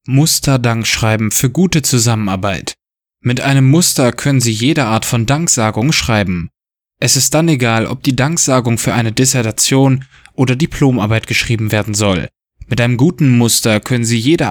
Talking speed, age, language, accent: 155 wpm, 20-39, German, German